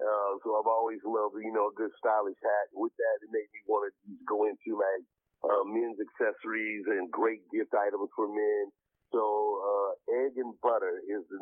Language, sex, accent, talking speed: English, male, American, 195 wpm